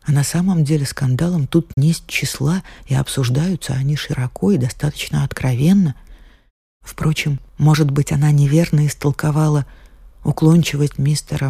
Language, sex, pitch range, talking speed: Russian, female, 135-175 Hz, 120 wpm